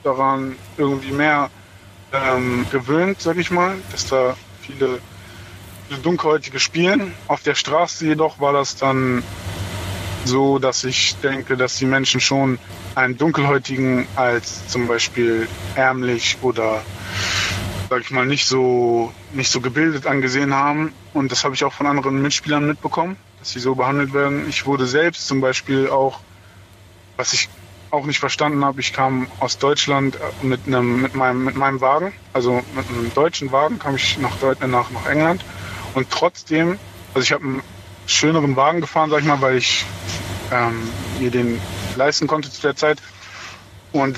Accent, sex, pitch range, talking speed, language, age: German, male, 100-140 Hz, 160 wpm, German, 20-39